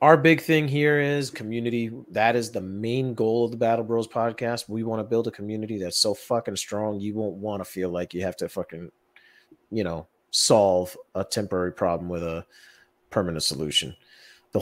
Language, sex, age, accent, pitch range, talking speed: English, male, 30-49, American, 95-120 Hz, 195 wpm